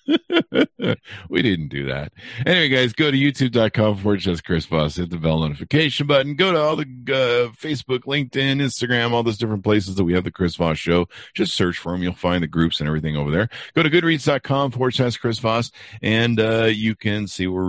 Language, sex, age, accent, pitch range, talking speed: English, male, 50-69, American, 85-125 Hz, 210 wpm